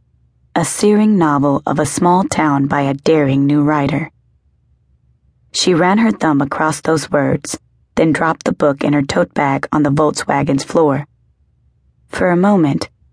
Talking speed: 155 wpm